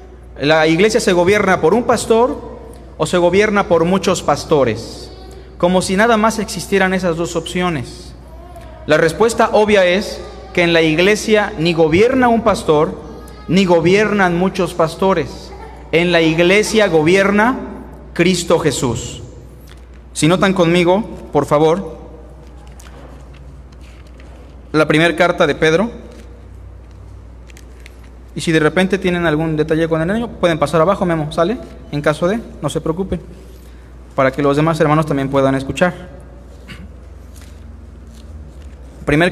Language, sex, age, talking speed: Spanish, male, 40-59, 125 wpm